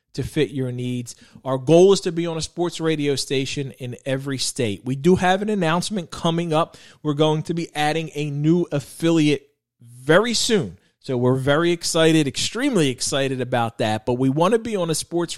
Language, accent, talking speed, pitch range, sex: English, American, 195 wpm, 125-160 Hz, male